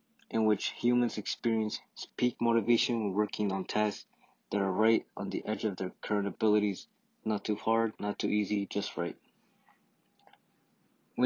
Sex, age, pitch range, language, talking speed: male, 20-39, 100-115 Hz, English, 155 wpm